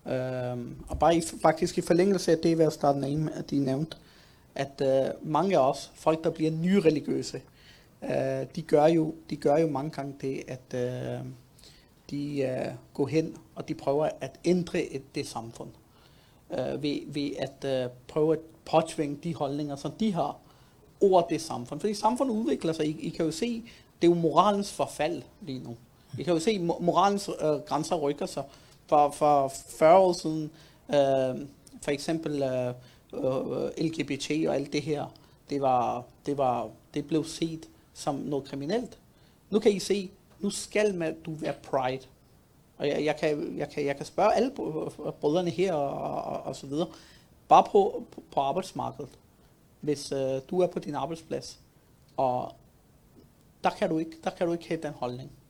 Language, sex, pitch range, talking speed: Danish, male, 140-170 Hz, 180 wpm